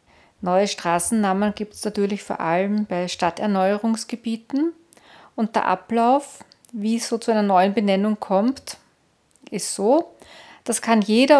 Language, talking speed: German, 130 wpm